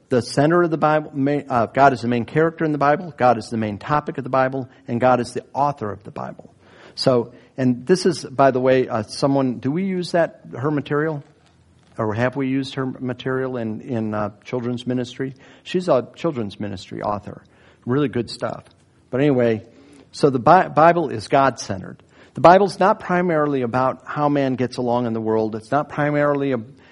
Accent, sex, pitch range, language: American, male, 120-150 Hz, English